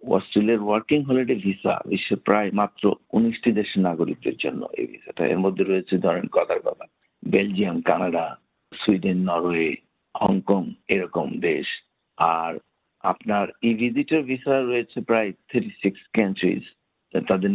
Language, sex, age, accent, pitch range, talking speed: Bengali, male, 60-79, native, 95-120 Hz, 50 wpm